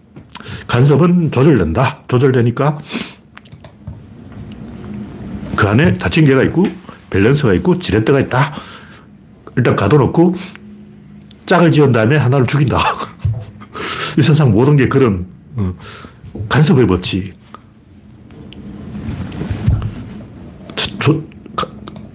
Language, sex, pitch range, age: Korean, male, 110-155 Hz, 60-79